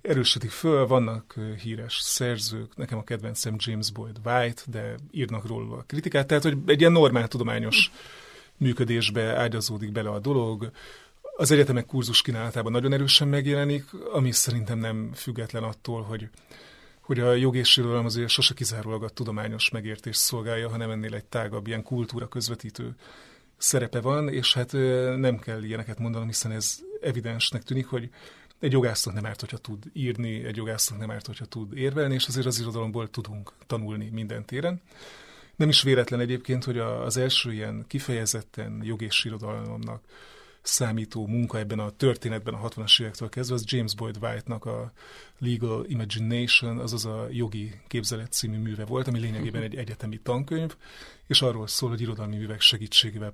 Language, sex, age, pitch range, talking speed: Hungarian, male, 30-49, 110-125 Hz, 155 wpm